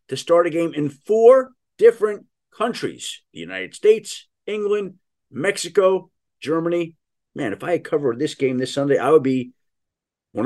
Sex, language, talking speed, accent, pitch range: male, English, 155 wpm, American, 130-210 Hz